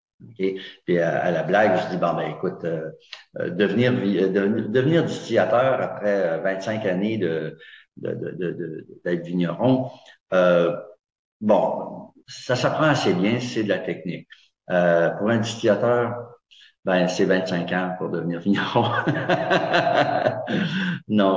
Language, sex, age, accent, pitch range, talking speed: French, male, 60-79, French, 85-110 Hz, 140 wpm